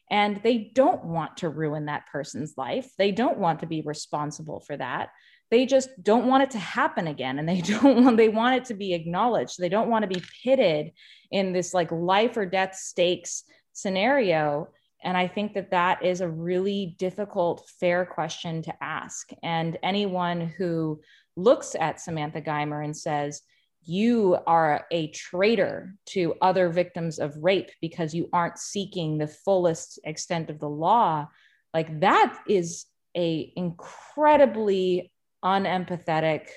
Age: 20-39